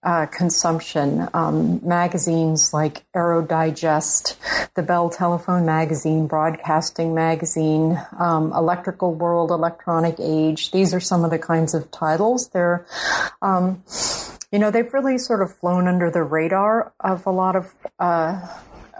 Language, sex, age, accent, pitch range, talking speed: English, female, 40-59, American, 165-195 Hz, 135 wpm